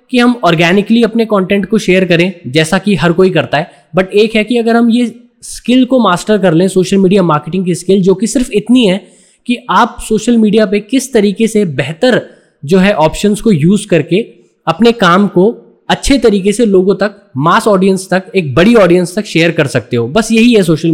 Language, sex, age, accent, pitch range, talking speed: Hindi, male, 20-39, native, 170-215 Hz, 210 wpm